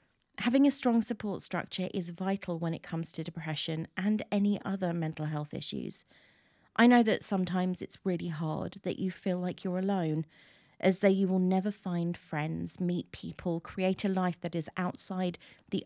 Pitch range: 165-200 Hz